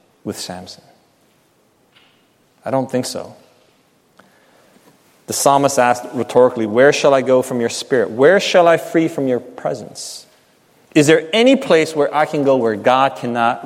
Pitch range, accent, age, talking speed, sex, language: 130-210 Hz, American, 30-49, 155 wpm, male, English